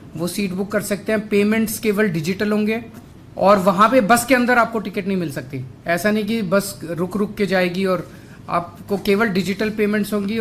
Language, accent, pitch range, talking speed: Hindi, native, 175-220 Hz, 200 wpm